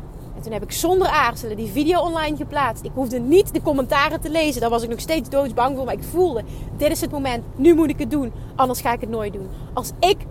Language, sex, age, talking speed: Dutch, female, 30-49, 250 wpm